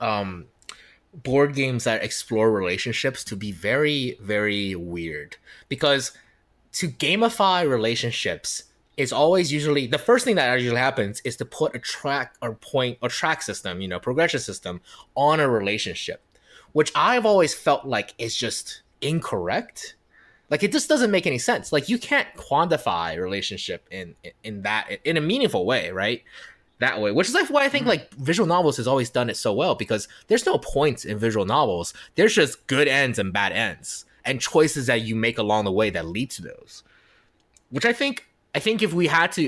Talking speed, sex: 185 wpm, male